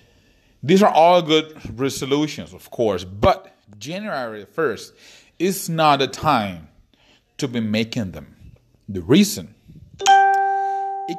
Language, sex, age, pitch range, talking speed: English, male, 30-49, 105-150 Hz, 115 wpm